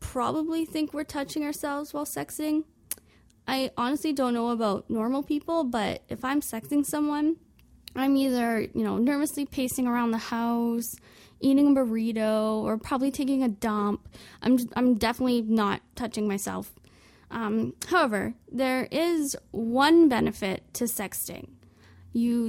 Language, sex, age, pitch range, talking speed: English, female, 10-29, 220-290 Hz, 140 wpm